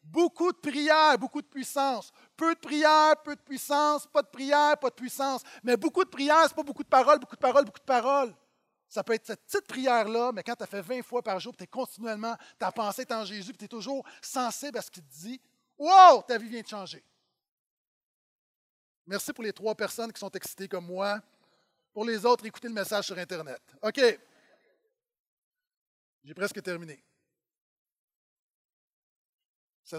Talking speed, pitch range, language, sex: 190 wpm, 165-255 Hz, French, male